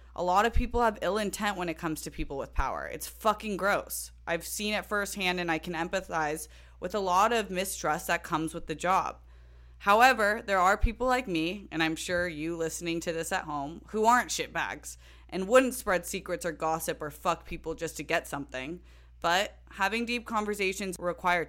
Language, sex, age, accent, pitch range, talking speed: English, female, 20-39, American, 155-195 Hz, 200 wpm